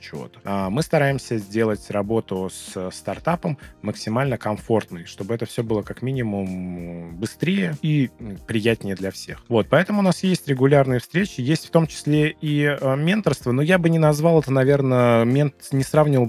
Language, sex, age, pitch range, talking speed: Russian, male, 20-39, 100-140 Hz, 160 wpm